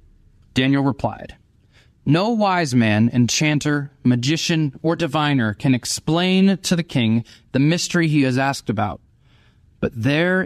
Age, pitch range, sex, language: 30-49, 115-155 Hz, male, English